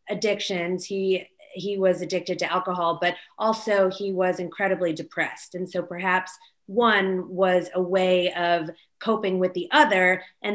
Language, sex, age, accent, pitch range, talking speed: English, female, 30-49, American, 180-220 Hz, 150 wpm